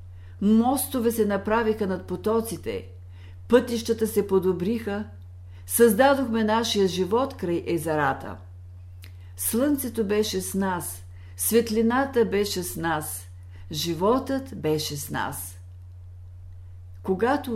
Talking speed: 90 wpm